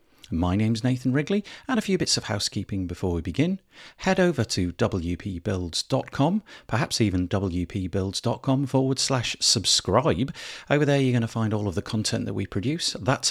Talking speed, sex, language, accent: 165 wpm, male, English, British